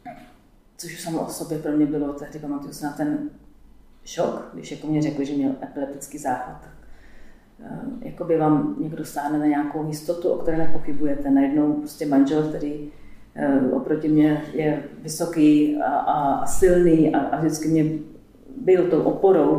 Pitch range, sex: 150-175 Hz, female